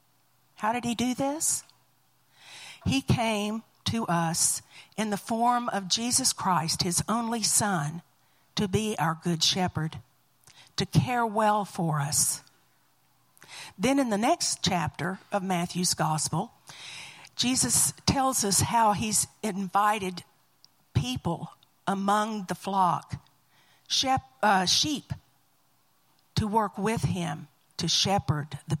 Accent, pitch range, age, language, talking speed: American, 150-210 Hz, 50-69, English, 115 wpm